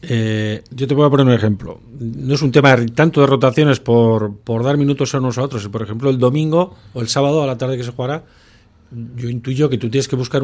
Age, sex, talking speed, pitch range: 40-59, male, 245 wpm, 115-140 Hz